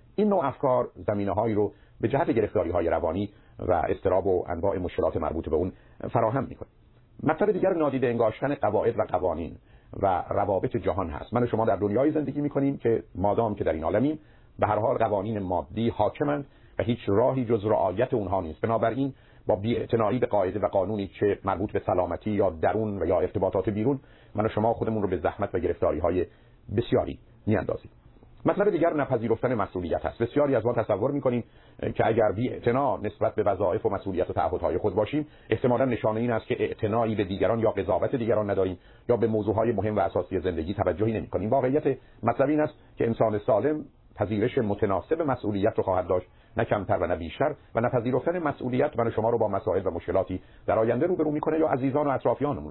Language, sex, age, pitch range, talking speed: Persian, male, 50-69, 105-130 Hz, 190 wpm